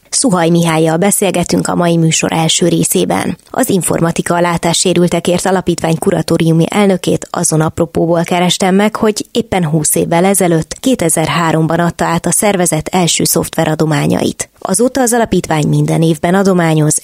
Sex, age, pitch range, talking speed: female, 20-39, 160-190 Hz, 125 wpm